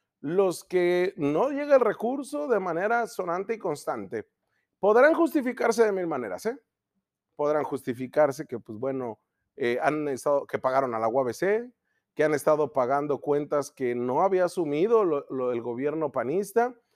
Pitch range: 145-210 Hz